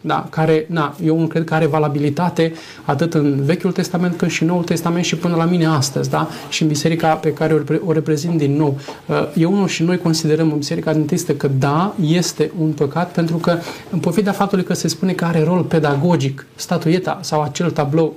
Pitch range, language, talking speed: 155-180 Hz, Romanian, 205 wpm